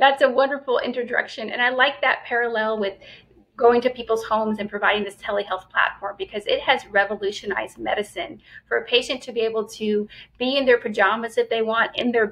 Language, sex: English, female